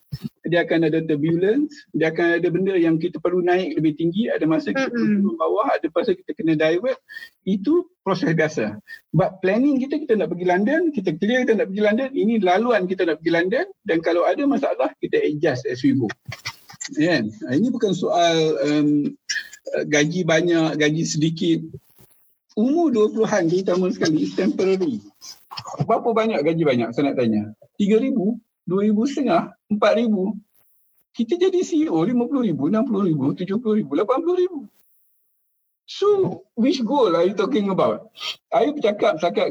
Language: Malay